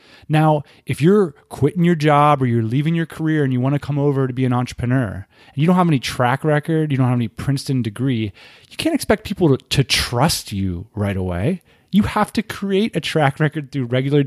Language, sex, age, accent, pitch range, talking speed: English, male, 30-49, American, 115-155 Hz, 225 wpm